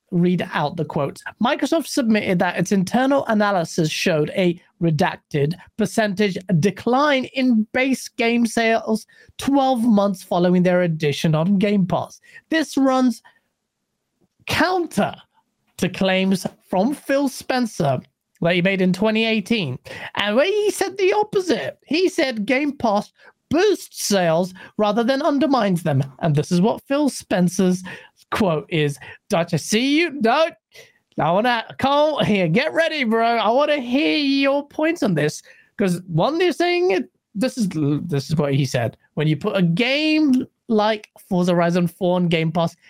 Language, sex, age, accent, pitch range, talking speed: English, male, 30-49, British, 180-275 Hz, 150 wpm